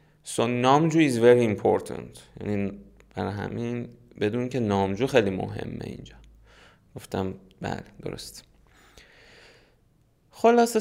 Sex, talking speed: male, 90 wpm